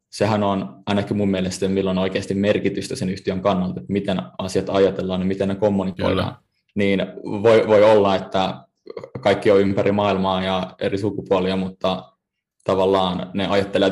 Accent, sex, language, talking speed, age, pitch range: native, male, Finnish, 150 wpm, 20-39, 95-105 Hz